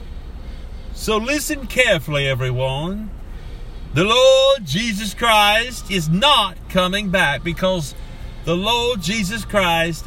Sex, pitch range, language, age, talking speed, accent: male, 145-215 Hz, English, 50-69, 100 wpm, American